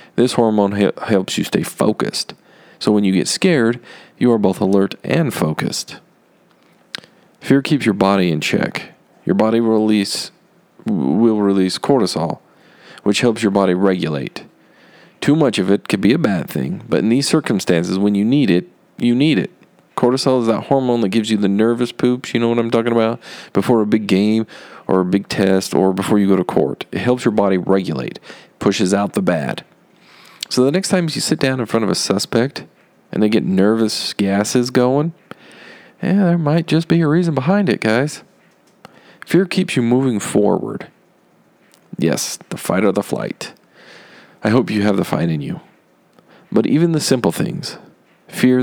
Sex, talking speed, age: male, 180 wpm, 40-59